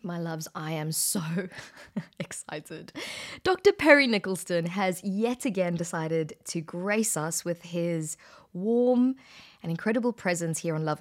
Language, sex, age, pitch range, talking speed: English, female, 20-39, 170-230 Hz, 135 wpm